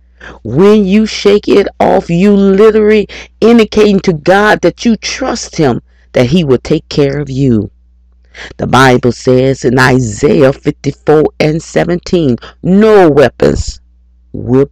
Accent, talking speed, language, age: American, 130 wpm, English, 40-59